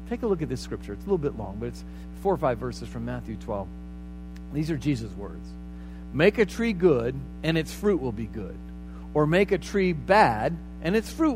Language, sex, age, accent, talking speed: English, male, 50-69, American, 220 wpm